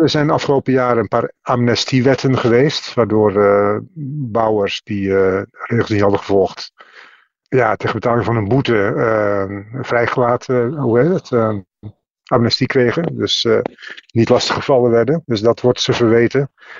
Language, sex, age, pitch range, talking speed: Dutch, male, 50-69, 105-125 Hz, 150 wpm